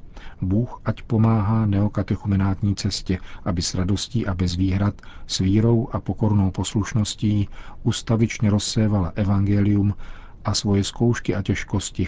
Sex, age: male, 40-59